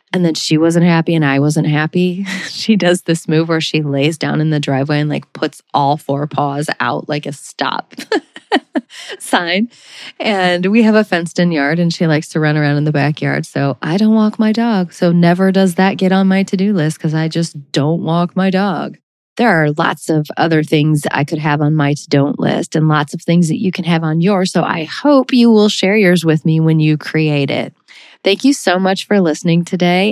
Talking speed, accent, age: 225 wpm, American, 30-49